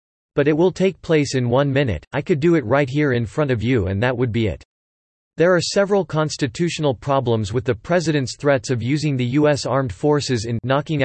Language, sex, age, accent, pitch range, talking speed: English, male, 40-59, American, 120-150 Hz, 215 wpm